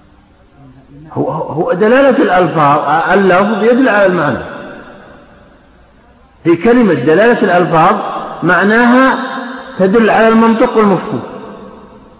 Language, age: Arabic, 50-69